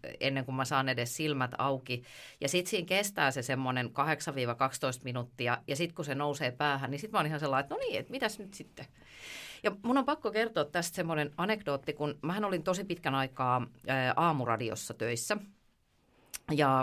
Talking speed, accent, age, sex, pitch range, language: 180 wpm, native, 30-49, female, 130-170 Hz, Finnish